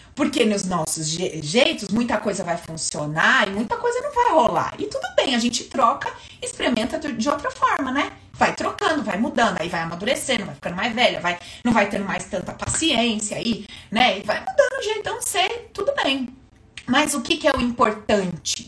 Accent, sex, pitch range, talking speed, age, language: Brazilian, female, 190-280 Hz, 200 wpm, 30-49, Portuguese